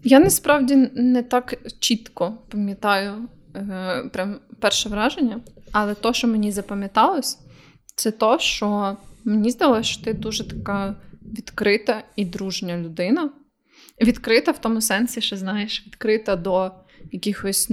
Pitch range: 205-255 Hz